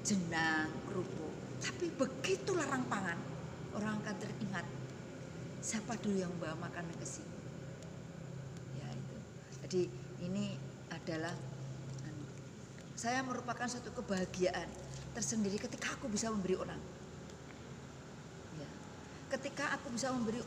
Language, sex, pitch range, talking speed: Indonesian, female, 155-225 Hz, 105 wpm